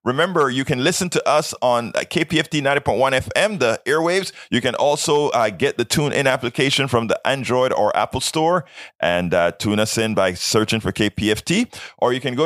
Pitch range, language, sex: 95-150 Hz, English, male